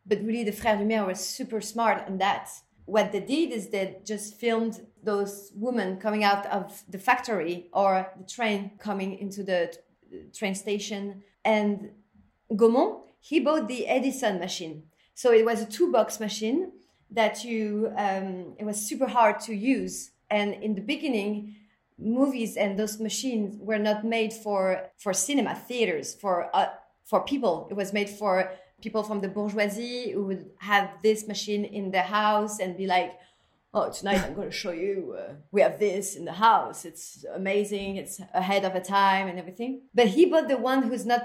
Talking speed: 180 wpm